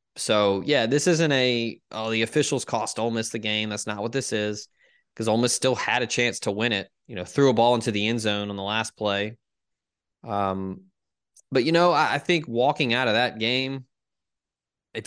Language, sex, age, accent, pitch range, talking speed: English, male, 20-39, American, 105-120 Hz, 215 wpm